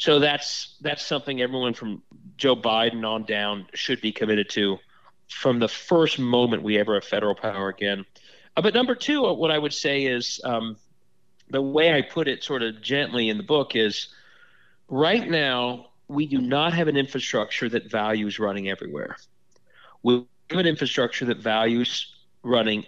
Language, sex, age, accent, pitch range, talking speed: English, male, 40-59, American, 115-160 Hz, 170 wpm